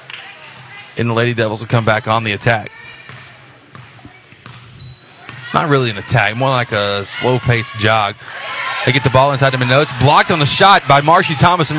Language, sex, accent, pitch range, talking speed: English, male, American, 125-145 Hz, 175 wpm